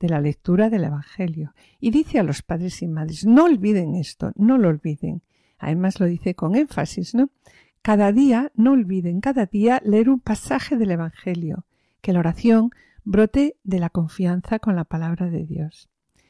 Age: 50-69